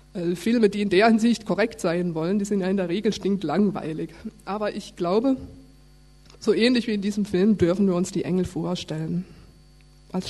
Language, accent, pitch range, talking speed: German, German, 175-210 Hz, 185 wpm